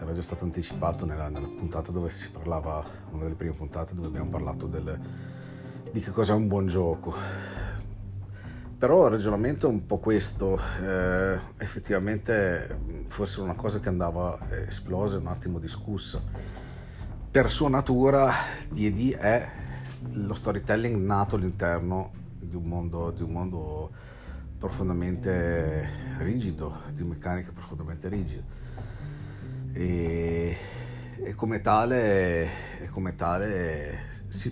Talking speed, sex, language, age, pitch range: 125 wpm, male, Italian, 40-59, 85-105 Hz